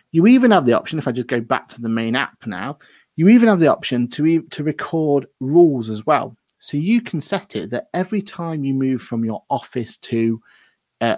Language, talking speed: English, 220 wpm